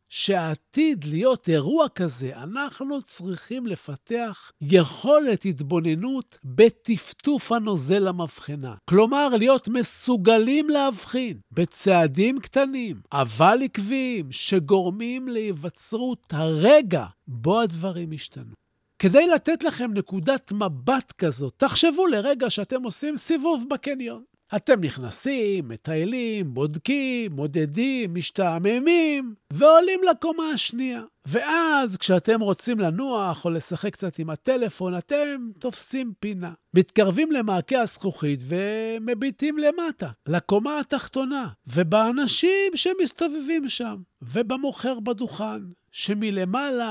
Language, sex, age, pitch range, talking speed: Hebrew, male, 50-69, 175-265 Hz, 90 wpm